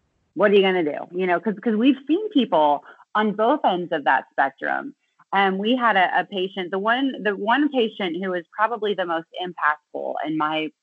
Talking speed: 215 wpm